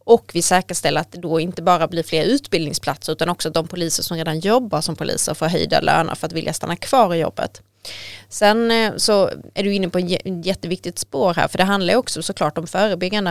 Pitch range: 165-210 Hz